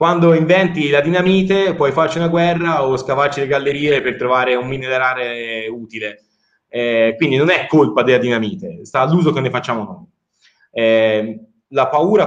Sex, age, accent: male, 30-49, native